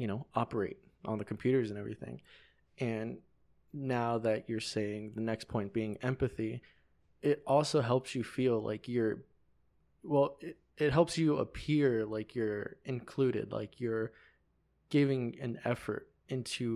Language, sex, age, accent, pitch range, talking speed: English, male, 20-39, American, 115-135 Hz, 145 wpm